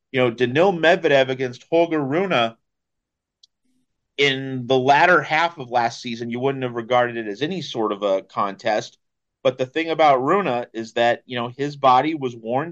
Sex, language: male, English